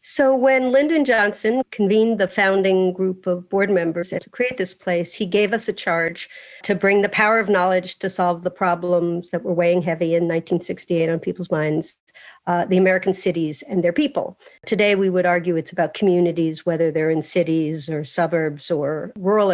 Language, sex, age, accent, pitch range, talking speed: English, female, 50-69, American, 180-220 Hz, 185 wpm